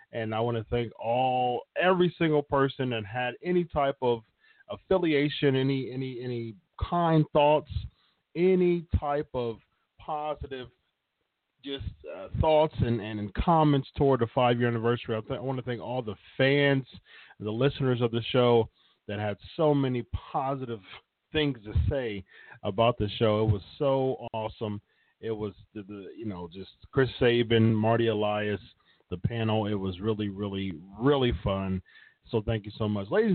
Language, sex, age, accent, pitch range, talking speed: English, male, 40-59, American, 110-145 Hz, 160 wpm